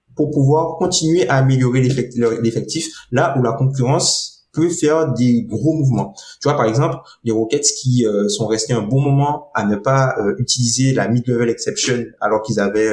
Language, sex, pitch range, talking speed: French, male, 110-140 Hz, 185 wpm